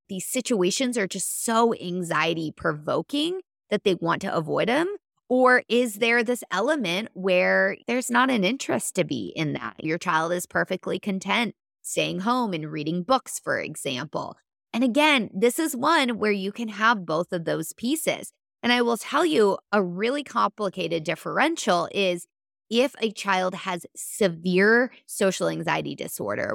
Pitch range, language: 175-240 Hz, English